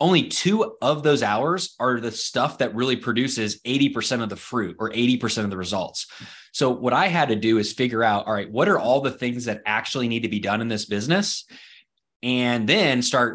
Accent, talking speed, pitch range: American, 215 wpm, 110-135 Hz